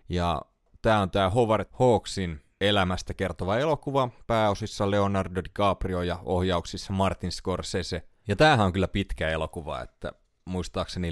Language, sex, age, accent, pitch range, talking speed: Finnish, male, 30-49, native, 90-115 Hz, 130 wpm